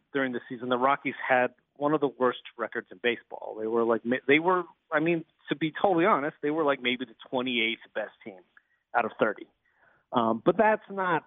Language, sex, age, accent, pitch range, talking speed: English, male, 40-59, American, 120-165 Hz, 215 wpm